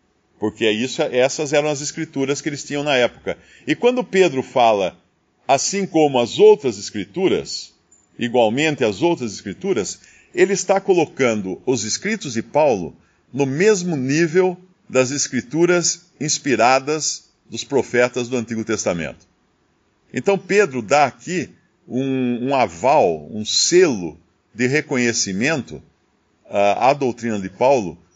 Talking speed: 120 wpm